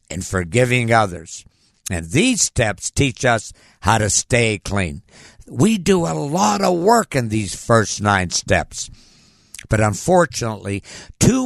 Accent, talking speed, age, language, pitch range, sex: American, 135 wpm, 60-79, English, 105-160 Hz, male